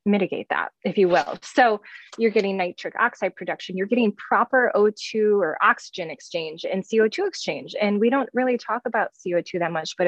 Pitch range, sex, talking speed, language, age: 175-230 Hz, female, 185 wpm, English, 20-39